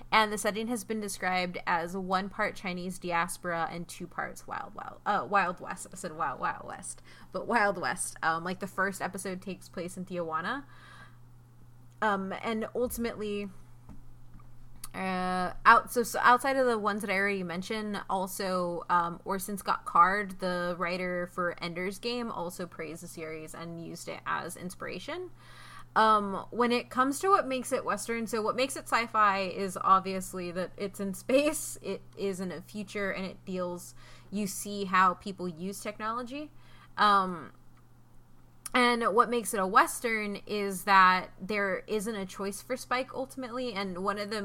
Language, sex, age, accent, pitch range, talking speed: English, female, 20-39, American, 175-210 Hz, 165 wpm